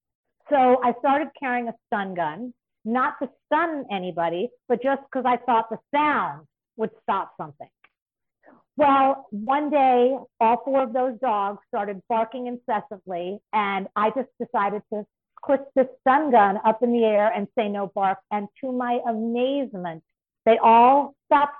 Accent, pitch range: American, 210-275 Hz